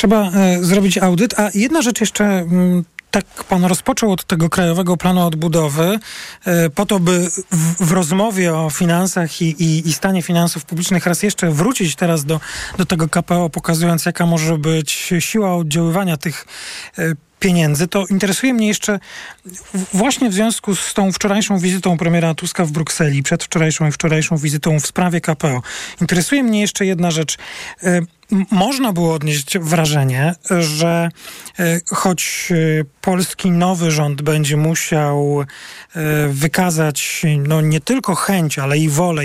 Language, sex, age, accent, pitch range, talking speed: Polish, male, 40-59, native, 160-195 Hz, 140 wpm